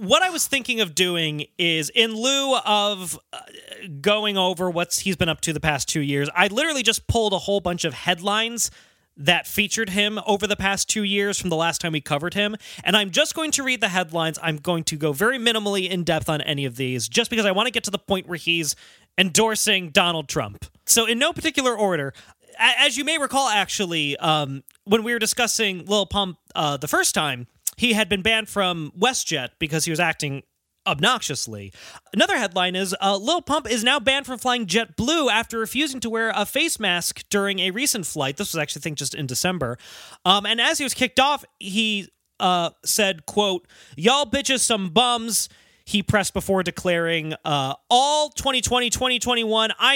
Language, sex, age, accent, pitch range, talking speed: English, male, 30-49, American, 165-230 Hz, 195 wpm